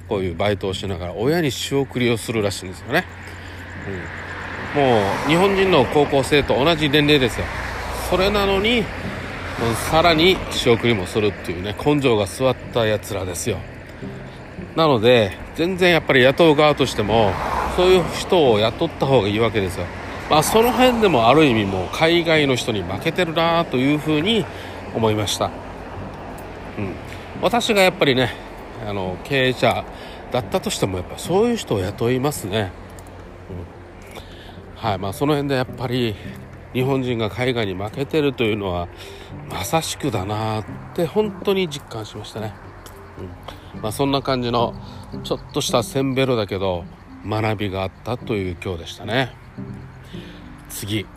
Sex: male